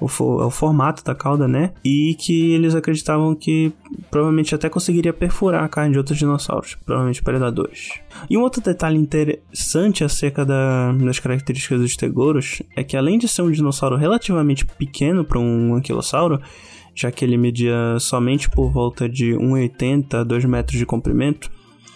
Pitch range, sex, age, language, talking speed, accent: 125-150 Hz, male, 10-29, Portuguese, 160 wpm, Brazilian